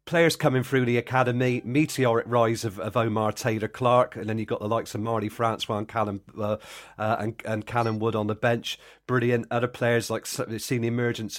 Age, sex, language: 40-59, male, English